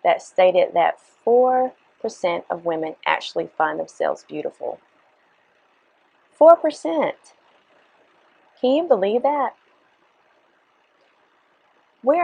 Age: 30-49